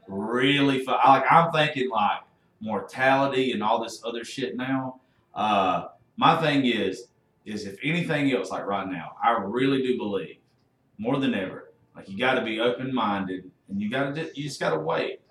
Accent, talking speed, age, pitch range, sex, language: American, 175 wpm, 40-59, 115-150 Hz, male, English